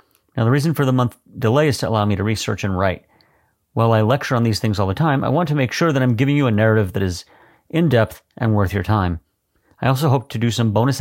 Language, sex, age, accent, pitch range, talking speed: English, male, 40-59, American, 100-130 Hz, 265 wpm